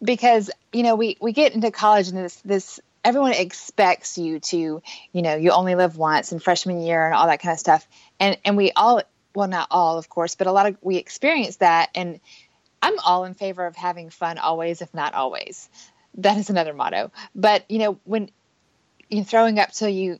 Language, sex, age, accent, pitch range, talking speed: English, female, 20-39, American, 165-205 Hz, 210 wpm